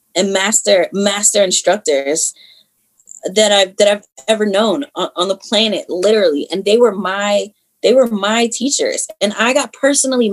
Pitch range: 185-245 Hz